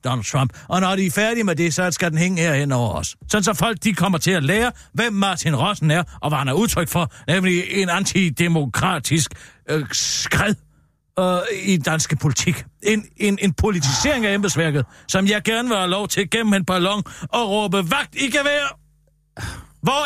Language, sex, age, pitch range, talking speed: Danish, male, 50-69, 175-235 Hz, 195 wpm